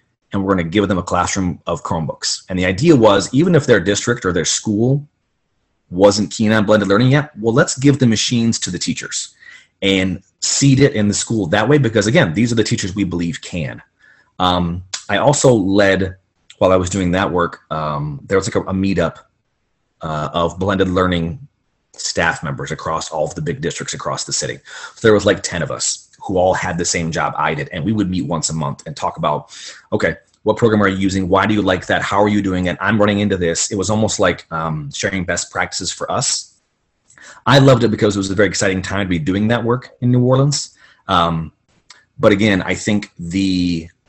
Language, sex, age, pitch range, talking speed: English, male, 30-49, 90-110 Hz, 220 wpm